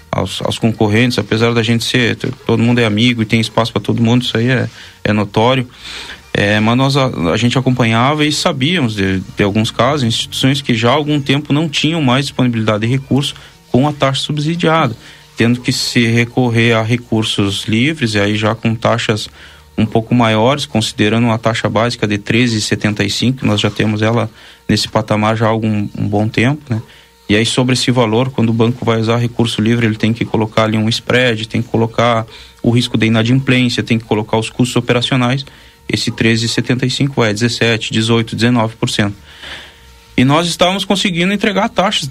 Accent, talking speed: Brazilian, 180 wpm